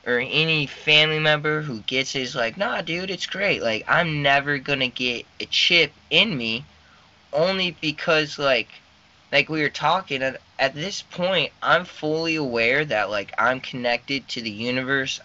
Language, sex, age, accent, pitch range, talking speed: English, male, 20-39, American, 120-155 Hz, 170 wpm